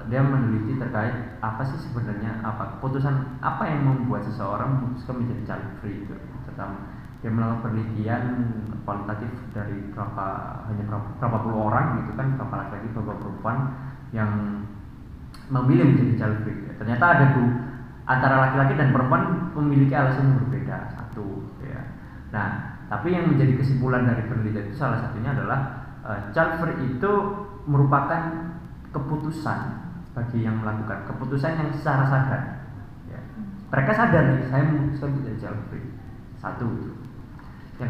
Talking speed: 135 wpm